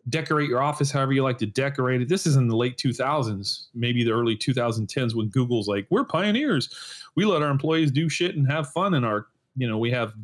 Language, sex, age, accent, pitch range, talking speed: English, male, 30-49, American, 120-165 Hz, 230 wpm